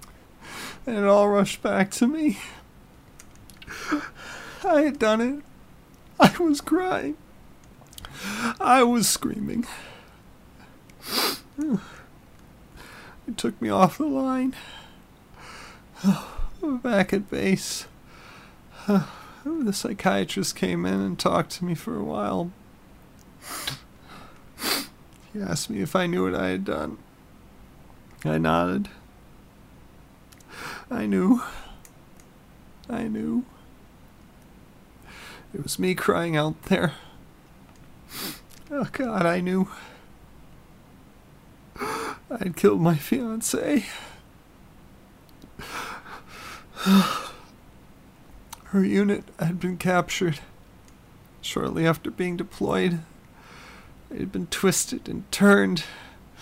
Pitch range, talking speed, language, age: 155-235 Hz, 85 wpm, English, 40-59